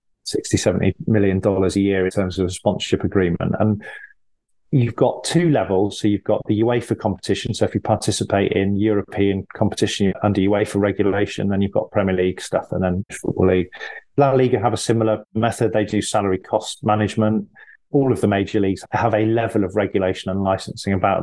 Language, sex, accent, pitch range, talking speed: English, male, British, 100-115 Hz, 190 wpm